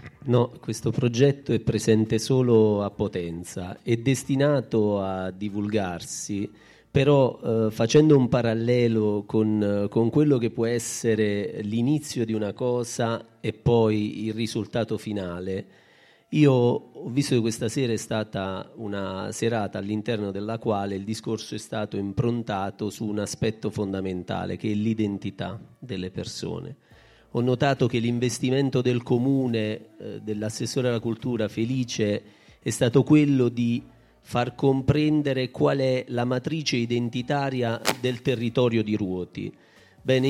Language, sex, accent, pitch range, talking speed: Italian, male, native, 110-135 Hz, 130 wpm